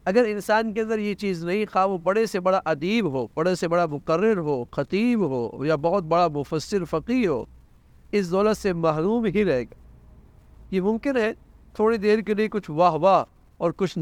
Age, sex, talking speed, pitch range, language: 50-69, male, 195 wpm, 120-190 Hz, English